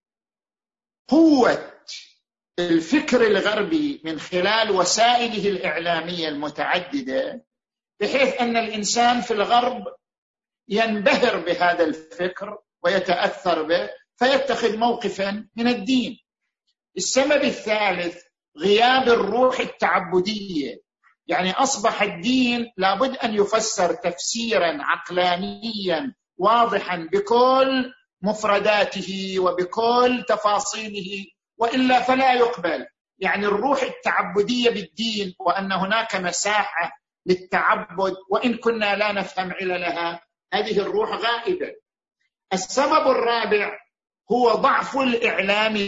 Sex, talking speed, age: male, 85 wpm, 50-69